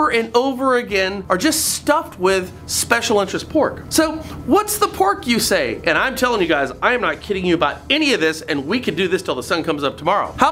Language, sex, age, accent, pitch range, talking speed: English, male, 30-49, American, 205-295 Hz, 240 wpm